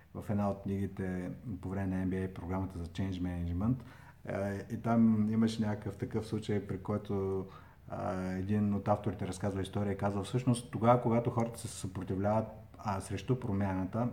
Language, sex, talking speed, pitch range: Bulgarian, male, 155 wpm, 100-120 Hz